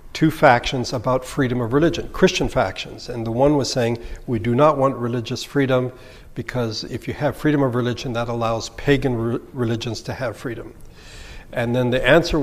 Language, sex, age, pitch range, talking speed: English, male, 60-79, 120-145 Hz, 185 wpm